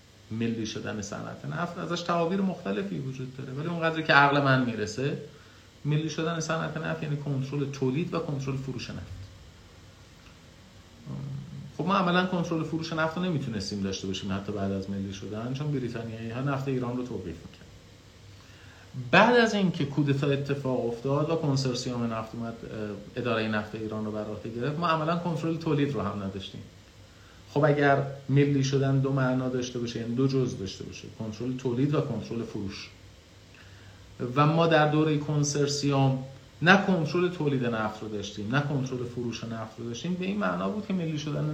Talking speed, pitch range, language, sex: 165 wpm, 110-155 Hz, Persian, male